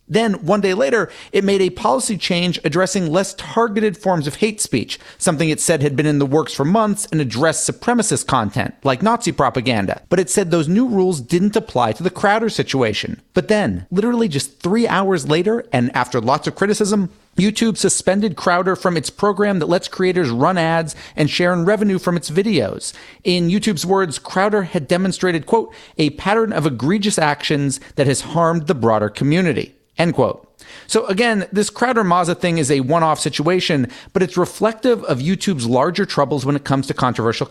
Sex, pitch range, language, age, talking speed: male, 145-200 Hz, English, 40-59, 190 wpm